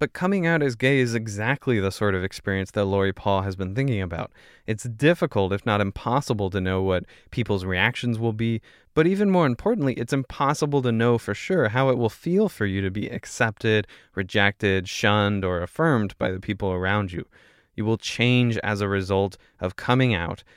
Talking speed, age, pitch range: 195 wpm, 20-39, 95-130 Hz